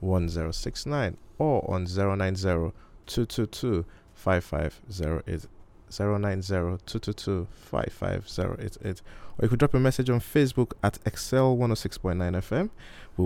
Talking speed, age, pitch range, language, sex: 85 wpm, 20-39, 85-105 Hz, English, male